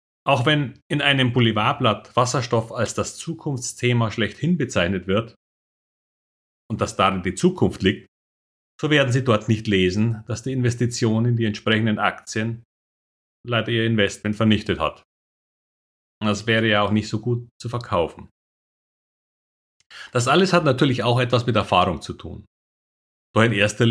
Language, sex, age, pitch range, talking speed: German, male, 40-59, 100-130 Hz, 145 wpm